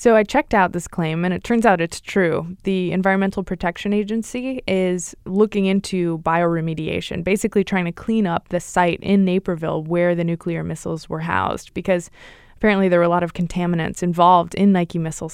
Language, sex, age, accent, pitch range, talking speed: English, female, 20-39, American, 175-210 Hz, 185 wpm